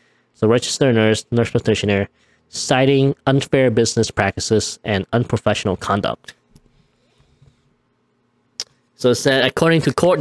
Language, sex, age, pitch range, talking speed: English, male, 20-39, 100-135 Hz, 105 wpm